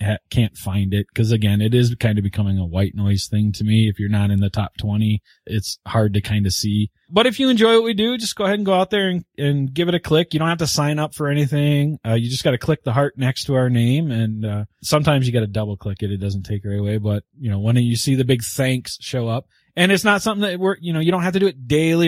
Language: English